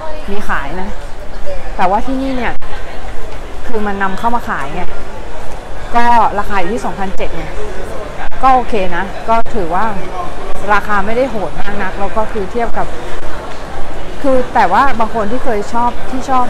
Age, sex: 20-39, female